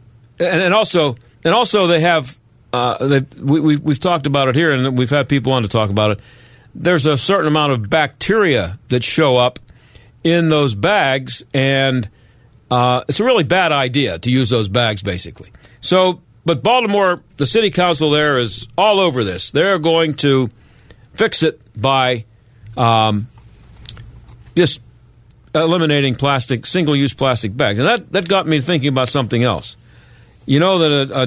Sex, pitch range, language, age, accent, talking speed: male, 115-150 Hz, English, 50-69, American, 165 wpm